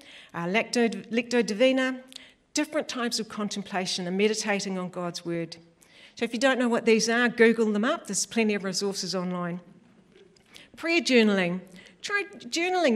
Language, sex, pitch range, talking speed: English, female, 195-255 Hz, 150 wpm